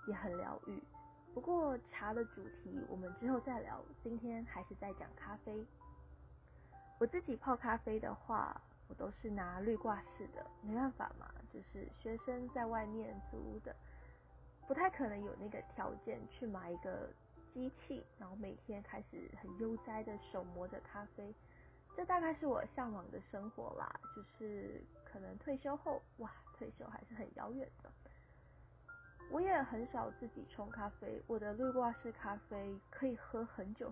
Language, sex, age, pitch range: Chinese, female, 20-39, 205-260 Hz